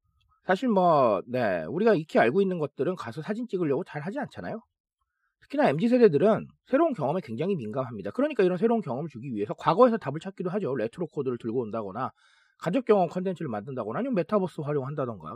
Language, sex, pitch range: Korean, male, 140-230 Hz